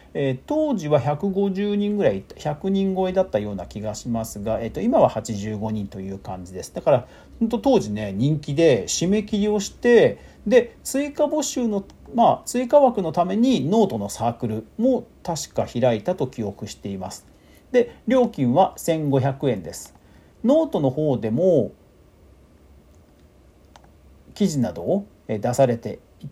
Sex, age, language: male, 40-59, Japanese